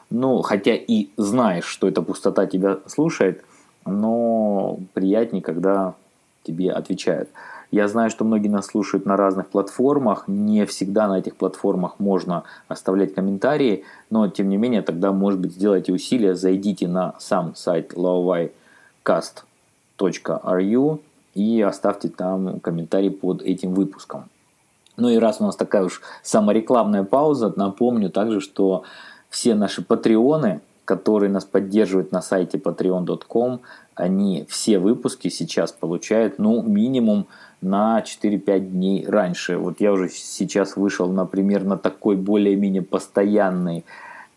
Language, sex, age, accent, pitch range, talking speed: Russian, male, 20-39, native, 95-110 Hz, 125 wpm